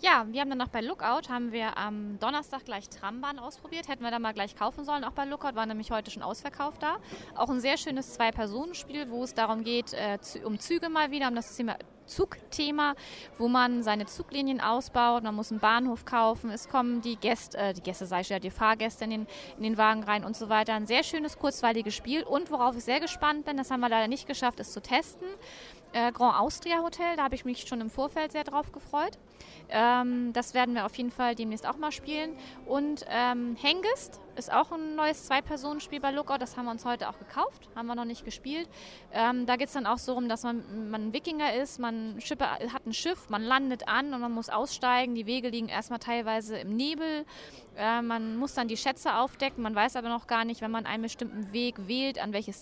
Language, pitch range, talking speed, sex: German, 225-280 Hz, 225 wpm, female